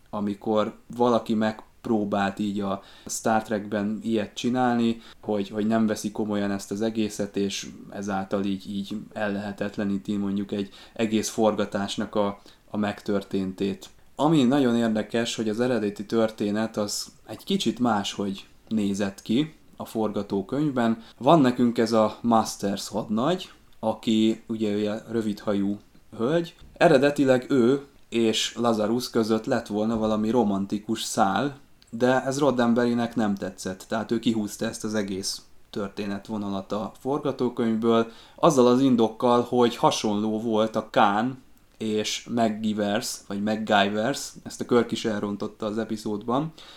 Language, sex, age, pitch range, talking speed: Hungarian, male, 20-39, 105-115 Hz, 125 wpm